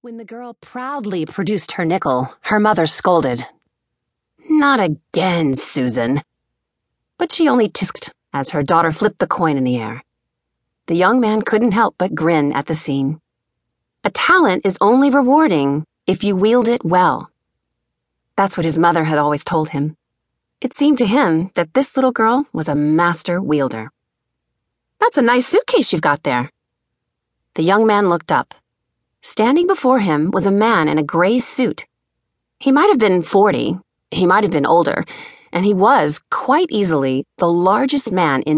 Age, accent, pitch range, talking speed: 30-49, American, 155-240 Hz, 165 wpm